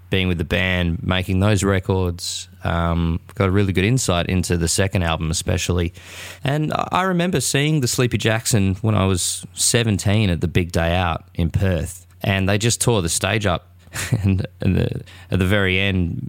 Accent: Australian